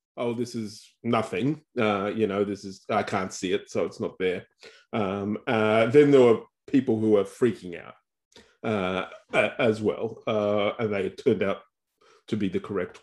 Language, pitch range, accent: English, 110-140 Hz, Australian